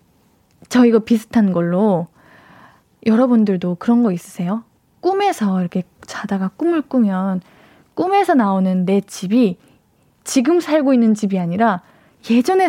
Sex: female